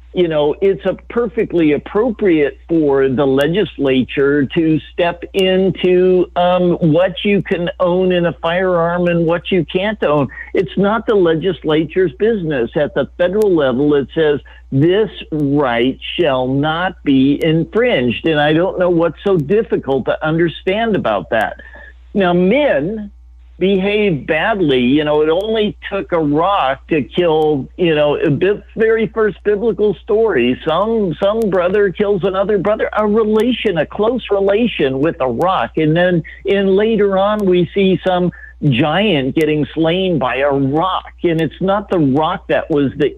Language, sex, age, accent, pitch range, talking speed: English, male, 50-69, American, 145-195 Hz, 150 wpm